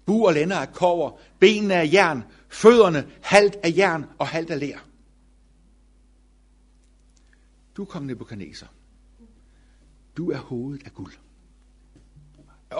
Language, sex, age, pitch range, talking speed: Danish, male, 60-79, 130-195 Hz, 115 wpm